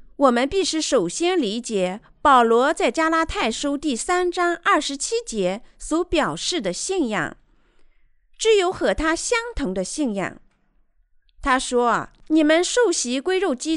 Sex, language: female, Chinese